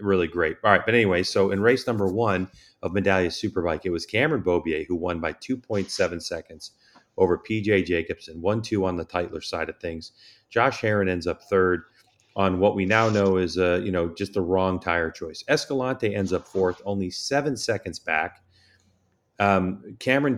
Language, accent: English, American